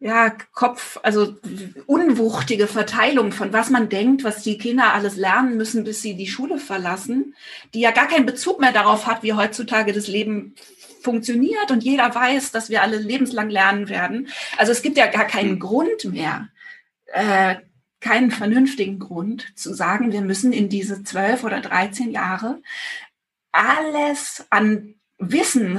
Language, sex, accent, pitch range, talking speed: German, female, German, 210-255 Hz, 155 wpm